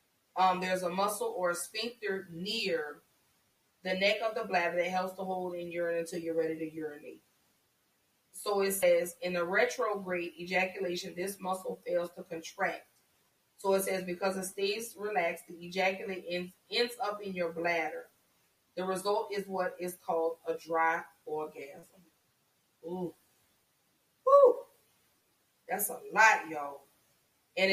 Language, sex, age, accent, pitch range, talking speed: English, female, 30-49, American, 170-200 Hz, 145 wpm